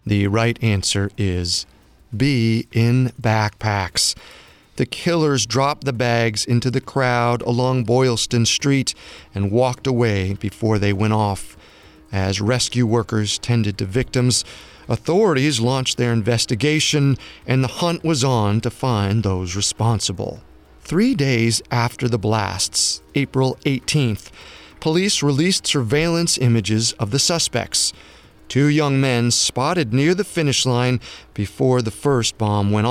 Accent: American